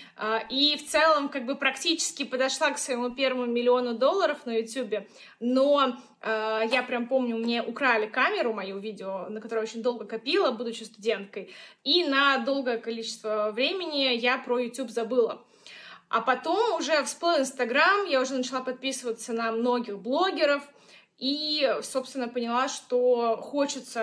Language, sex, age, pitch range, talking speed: Russian, female, 20-39, 230-275 Hz, 140 wpm